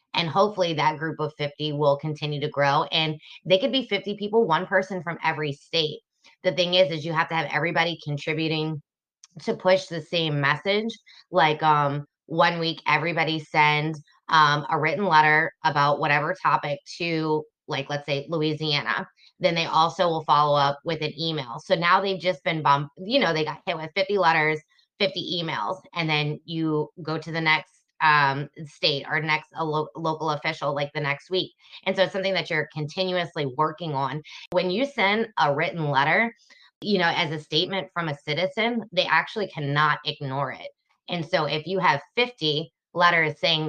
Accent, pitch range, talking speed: American, 150-180 Hz, 185 wpm